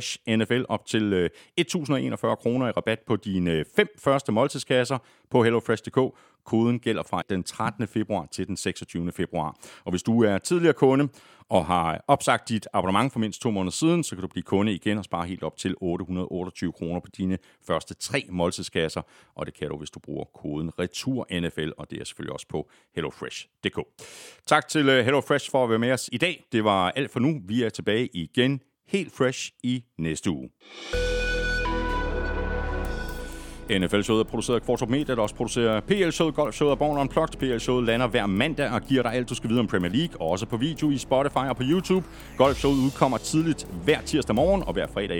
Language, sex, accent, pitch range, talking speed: Danish, male, native, 95-140 Hz, 190 wpm